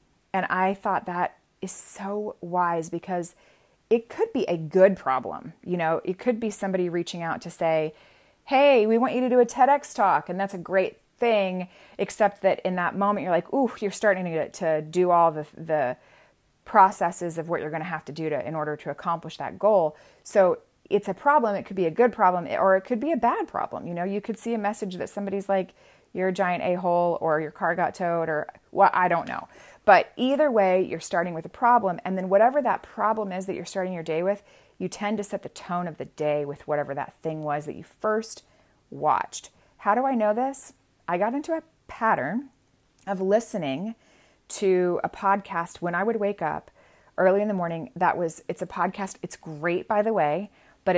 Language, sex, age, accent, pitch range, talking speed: English, female, 30-49, American, 165-210 Hz, 220 wpm